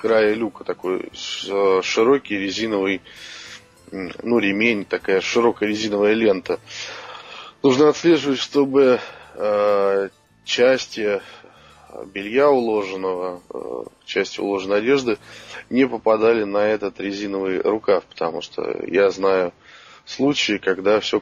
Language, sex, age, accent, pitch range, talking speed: Russian, male, 20-39, native, 95-120 Hz, 95 wpm